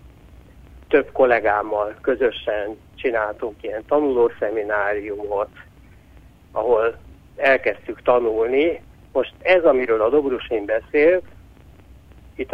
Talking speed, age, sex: 75 wpm, 60-79, male